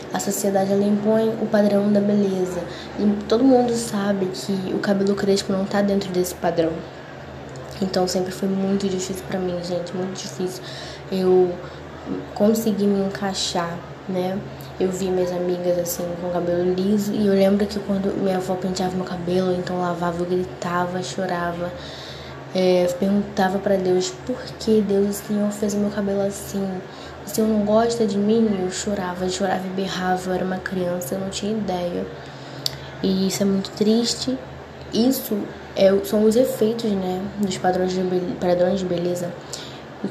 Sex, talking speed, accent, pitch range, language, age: female, 165 wpm, Brazilian, 180-205 Hz, Portuguese, 10-29